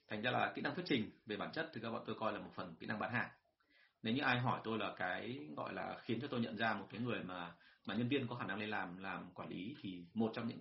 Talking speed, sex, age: 310 wpm, male, 30-49